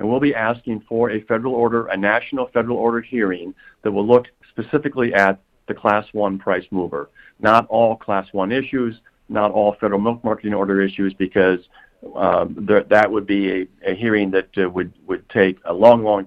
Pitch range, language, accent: 95-115 Hz, English, American